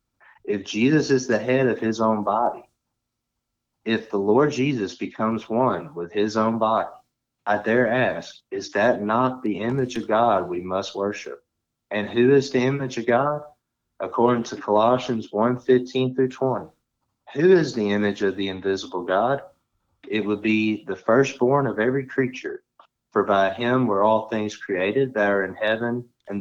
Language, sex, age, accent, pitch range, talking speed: English, male, 30-49, American, 100-120 Hz, 170 wpm